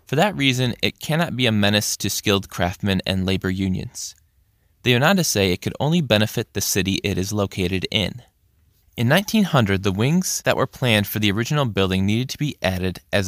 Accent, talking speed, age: American, 205 wpm, 20-39